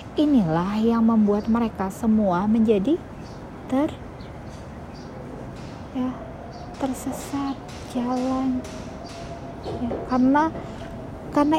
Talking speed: 65 wpm